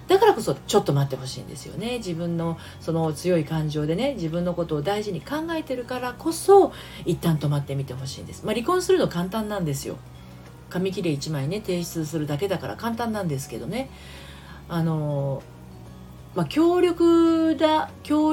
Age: 40-59